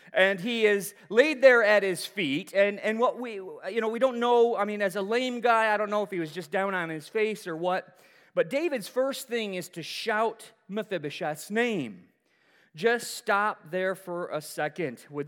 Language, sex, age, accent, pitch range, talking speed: English, male, 30-49, American, 175-240 Hz, 205 wpm